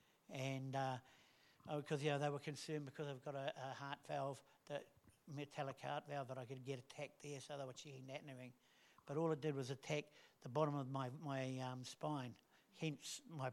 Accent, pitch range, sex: British, 140-185 Hz, male